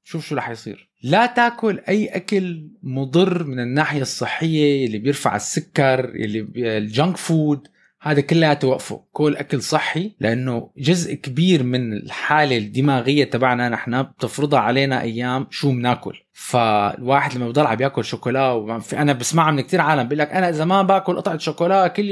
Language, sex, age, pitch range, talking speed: Arabic, male, 20-39, 140-205 Hz, 150 wpm